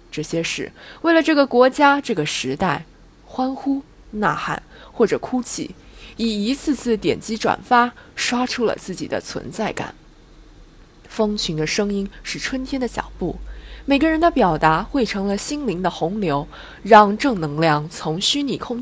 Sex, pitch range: female, 160-255 Hz